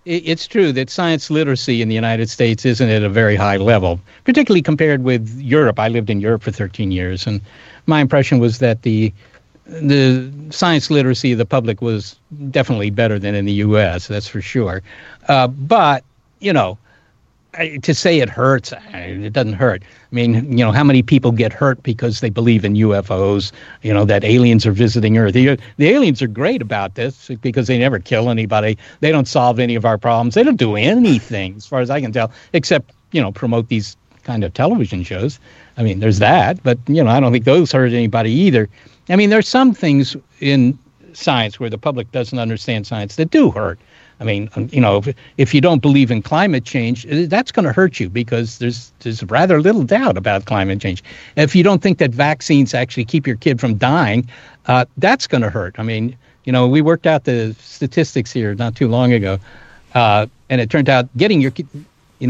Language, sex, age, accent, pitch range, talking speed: English, male, 60-79, American, 110-140 Hz, 210 wpm